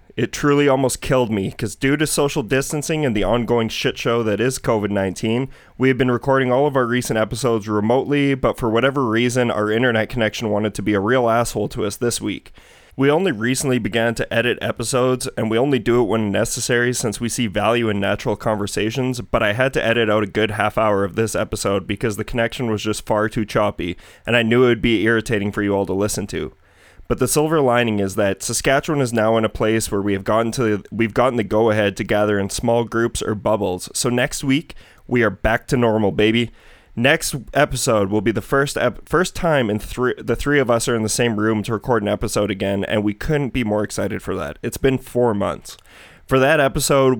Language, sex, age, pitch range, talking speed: English, male, 20-39, 105-130 Hz, 225 wpm